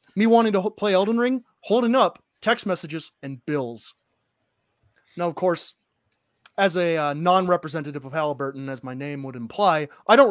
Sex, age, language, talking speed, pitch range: male, 30-49, English, 165 wpm, 135-185 Hz